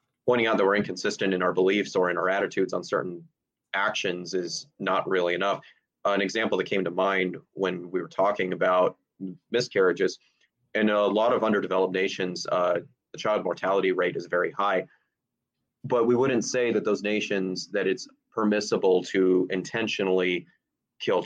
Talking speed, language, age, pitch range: 165 wpm, English, 30-49, 90-120 Hz